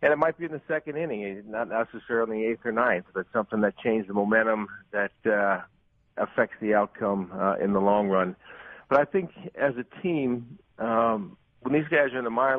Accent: American